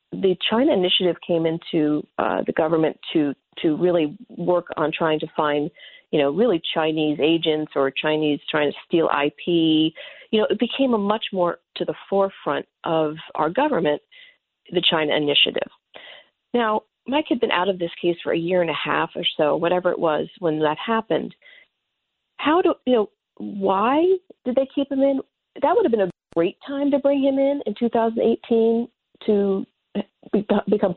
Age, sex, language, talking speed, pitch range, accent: 40-59, female, English, 175 wpm, 170-255 Hz, American